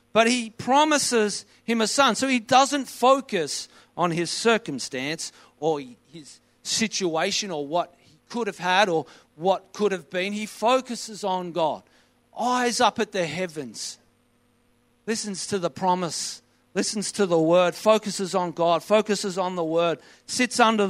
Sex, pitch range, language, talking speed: male, 145-210 Hz, English, 150 wpm